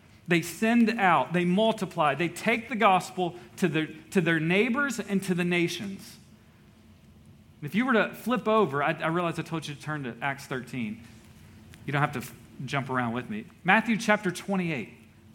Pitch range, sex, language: 125-180 Hz, male, English